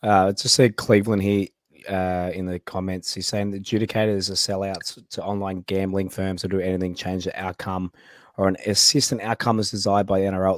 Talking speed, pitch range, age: 195 wpm, 90-115 Hz, 20-39